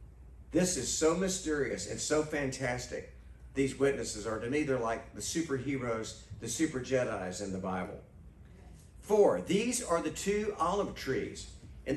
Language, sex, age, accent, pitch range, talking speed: English, male, 50-69, American, 115-180 Hz, 150 wpm